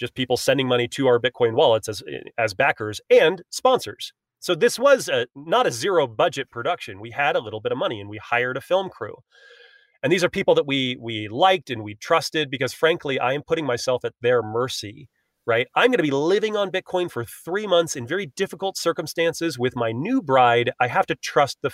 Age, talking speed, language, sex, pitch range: 30-49, 220 wpm, English, male, 120-185 Hz